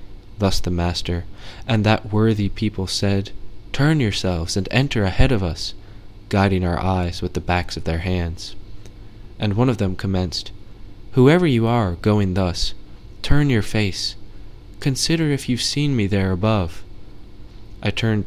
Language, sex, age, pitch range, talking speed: English, male, 20-39, 95-110 Hz, 150 wpm